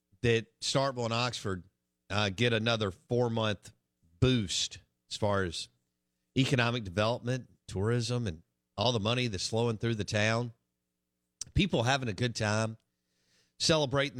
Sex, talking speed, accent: male, 125 wpm, American